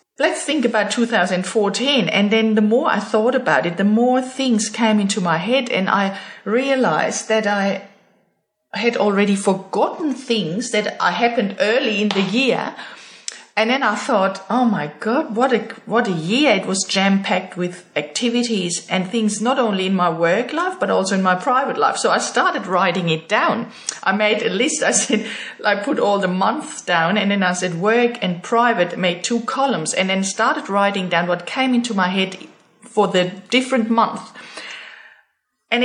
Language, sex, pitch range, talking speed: English, female, 195-240 Hz, 190 wpm